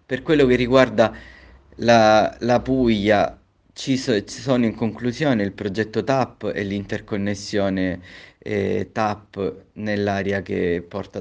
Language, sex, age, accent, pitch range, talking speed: Italian, male, 20-39, native, 95-115 Hz, 110 wpm